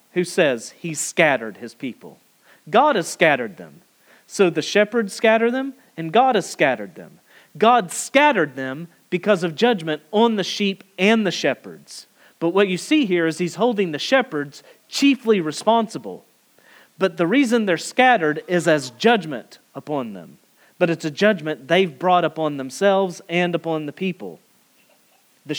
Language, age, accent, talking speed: English, 40-59, American, 155 wpm